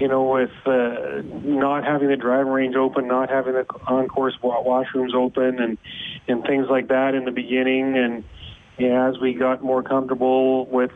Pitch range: 120-130 Hz